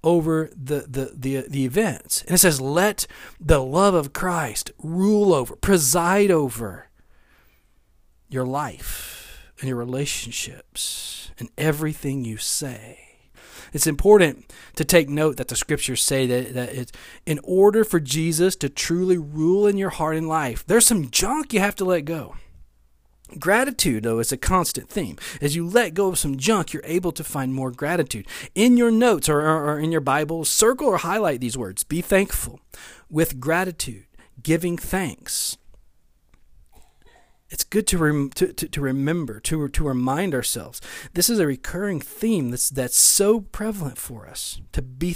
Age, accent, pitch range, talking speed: 40-59, American, 130-175 Hz, 165 wpm